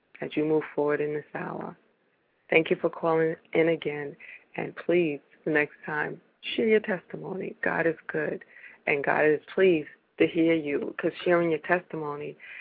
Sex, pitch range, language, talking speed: female, 145-165 Hz, English, 165 wpm